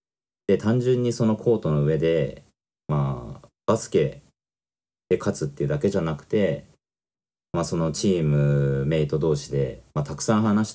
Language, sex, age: Japanese, male, 40-59